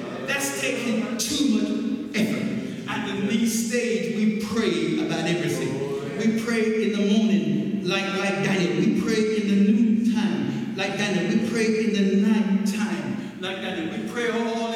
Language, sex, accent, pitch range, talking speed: English, male, American, 210-235 Hz, 165 wpm